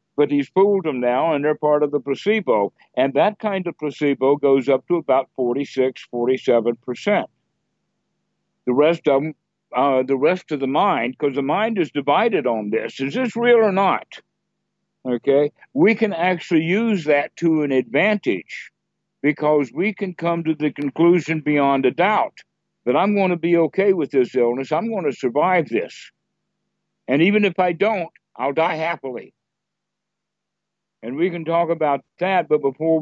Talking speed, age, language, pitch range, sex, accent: 170 wpm, 60-79, English, 135-170 Hz, male, American